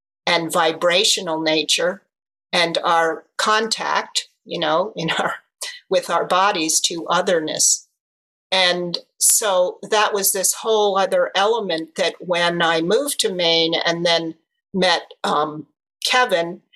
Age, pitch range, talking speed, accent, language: 50-69, 160-195 Hz, 120 wpm, American, English